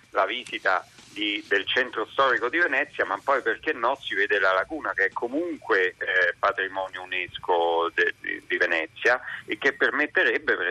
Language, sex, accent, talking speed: Italian, male, native, 170 wpm